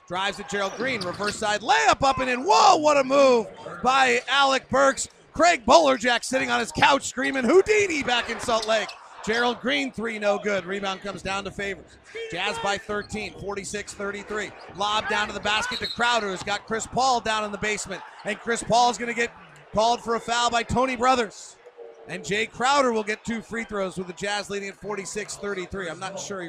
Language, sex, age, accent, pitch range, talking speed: English, male, 40-59, American, 195-245 Hz, 195 wpm